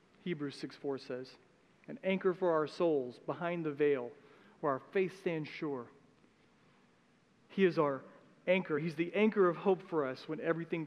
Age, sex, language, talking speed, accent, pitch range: 40-59, male, English, 160 wpm, American, 145-185 Hz